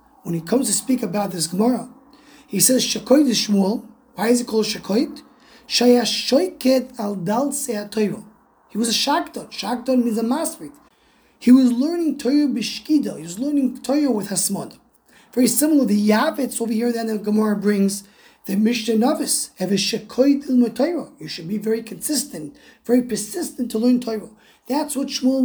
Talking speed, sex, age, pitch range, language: 160 wpm, male, 30-49, 215-265 Hz, English